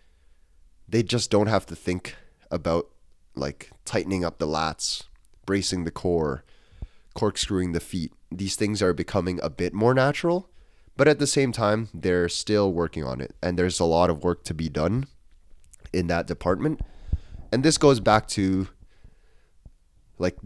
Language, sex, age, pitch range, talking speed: English, male, 20-39, 80-100 Hz, 160 wpm